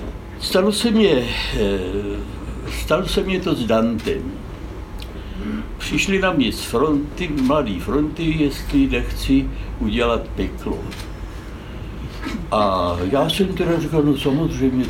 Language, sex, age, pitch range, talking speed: Czech, male, 60-79, 100-150 Hz, 110 wpm